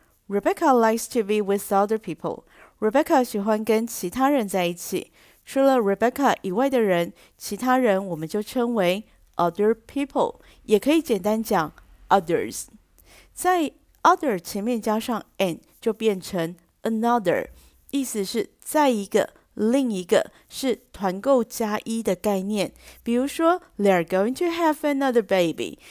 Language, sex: Chinese, female